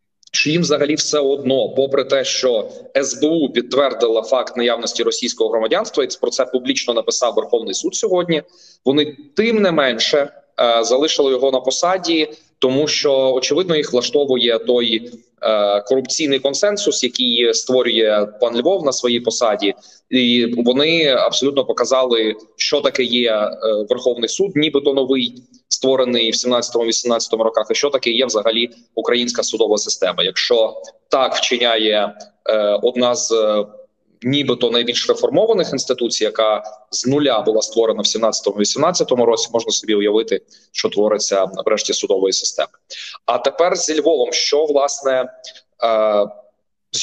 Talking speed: 135 wpm